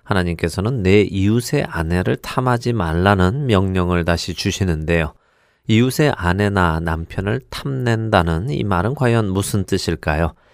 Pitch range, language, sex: 85-115 Hz, Korean, male